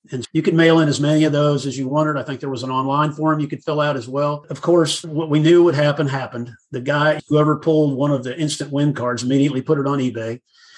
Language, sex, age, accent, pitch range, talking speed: English, male, 50-69, American, 130-160 Hz, 265 wpm